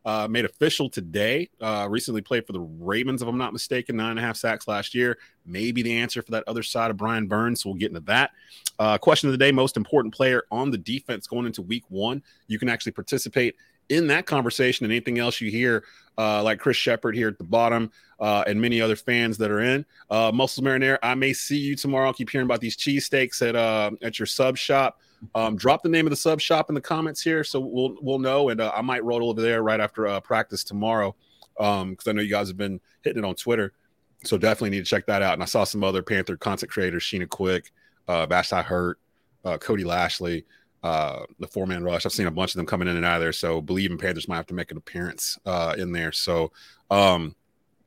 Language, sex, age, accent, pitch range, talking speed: English, male, 30-49, American, 100-125 Hz, 240 wpm